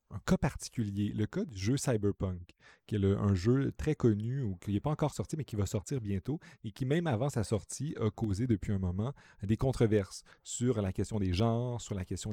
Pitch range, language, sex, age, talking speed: 100-120 Hz, French, male, 30-49, 230 wpm